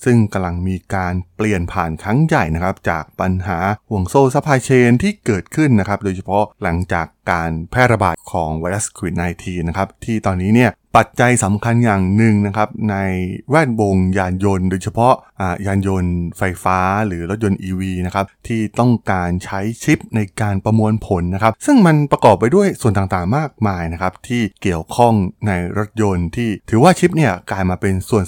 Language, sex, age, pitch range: Thai, male, 20-39, 95-125 Hz